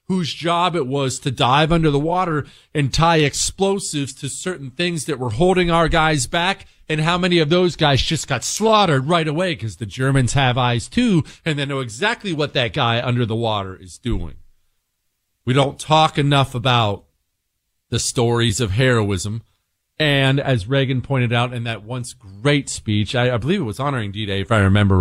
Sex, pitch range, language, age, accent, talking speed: male, 95-140 Hz, English, 40-59, American, 190 wpm